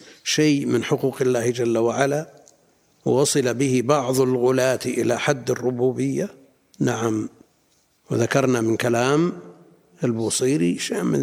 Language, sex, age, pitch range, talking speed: Arabic, male, 60-79, 120-140 Hz, 105 wpm